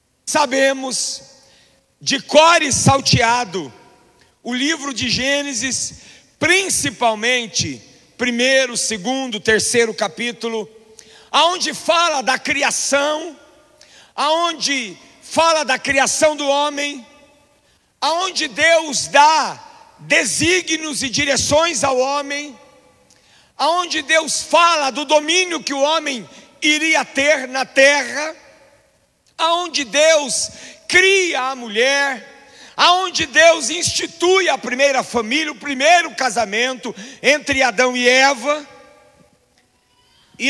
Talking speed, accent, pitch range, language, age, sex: 90 wpm, Brazilian, 250-310 Hz, Portuguese, 50-69, male